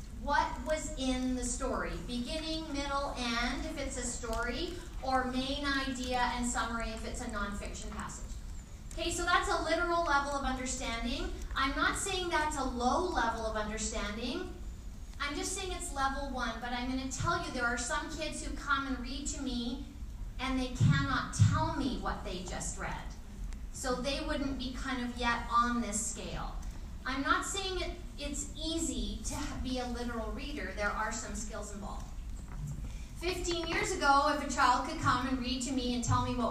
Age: 40-59